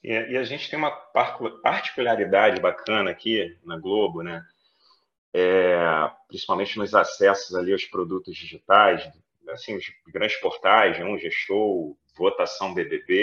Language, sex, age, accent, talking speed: English, male, 30-49, Brazilian, 120 wpm